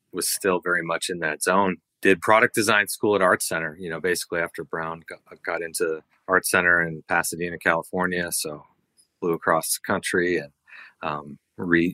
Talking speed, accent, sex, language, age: 175 wpm, American, male, English, 30-49